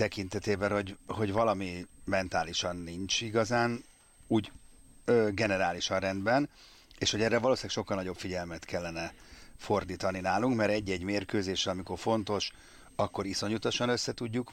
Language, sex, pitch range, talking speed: Hungarian, male, 90-115 Hz, 120 wpm